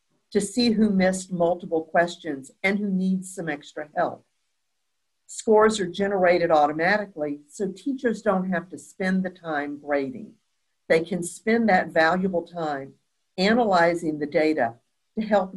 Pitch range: 155-200 Hz